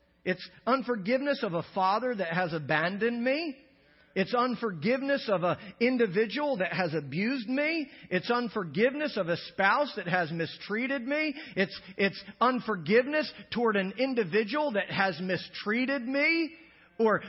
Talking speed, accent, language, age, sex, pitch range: 130 wpm, American, English, 40-59, male, 220-315 Hz